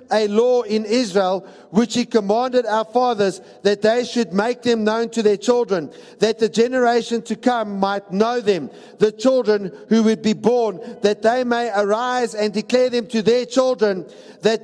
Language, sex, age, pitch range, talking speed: English, male, 50-69, 205-240 Hz, 175 wpm